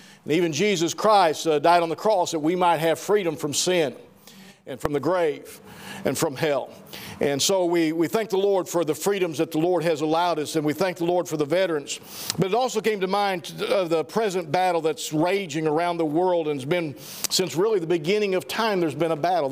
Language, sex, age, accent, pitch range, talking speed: English, male, 50-69, American, 165-200 Hz, 230 wpm